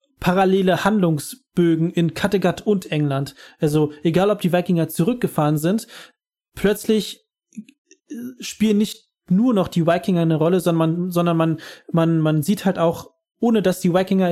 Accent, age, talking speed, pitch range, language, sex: German, 30-49, 145 wpm, 160-195 Hz, German, male